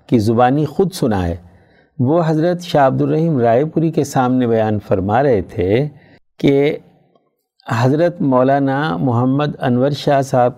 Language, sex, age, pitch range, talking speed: Urdu, male, 60-79, 115-150 Hz, 135 wpm